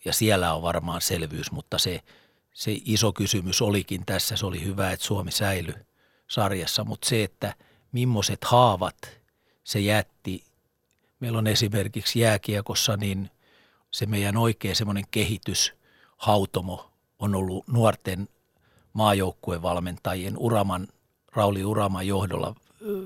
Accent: native